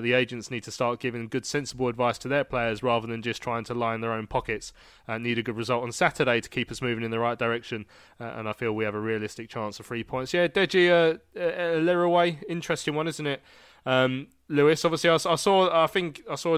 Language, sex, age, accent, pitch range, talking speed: English, male, 20-39, British, 120-150 Hz, 250 wpm